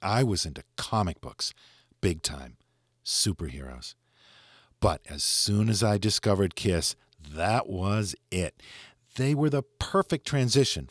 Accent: American